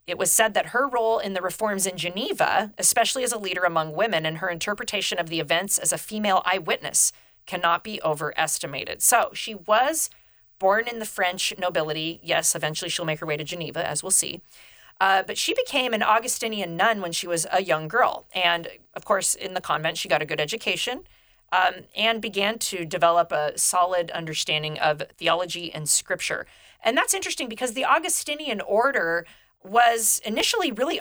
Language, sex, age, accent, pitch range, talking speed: English, female, 40-59, American, 170-225 Hz, 185 wpm